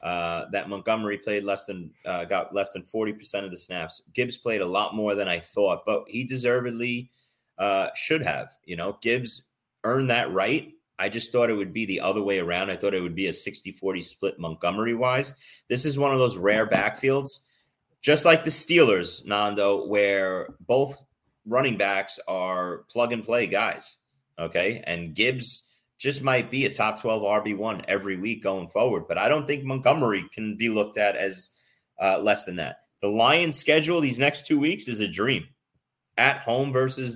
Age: 30-49